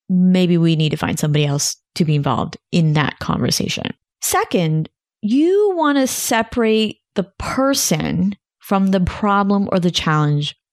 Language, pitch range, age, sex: English, 160-210 Hz, 30-49, female